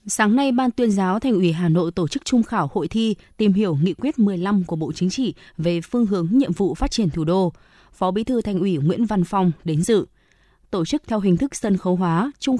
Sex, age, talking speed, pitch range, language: female, 20-39, 250 wpm, 180-225 Hz, Vietnamese